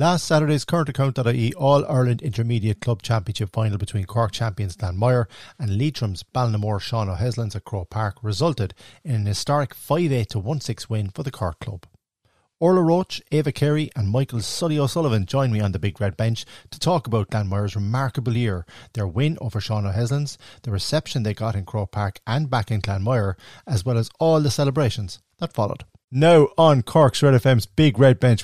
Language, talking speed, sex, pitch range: English, 180 wpm, male, 105-135 Hz